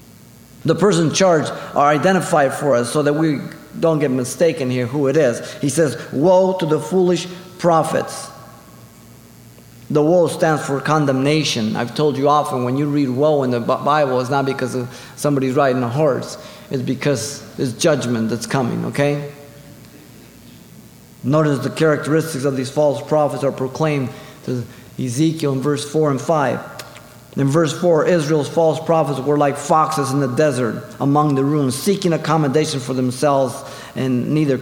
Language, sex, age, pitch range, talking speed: English, male, 30-49, 130-160 Hz, 160 wpm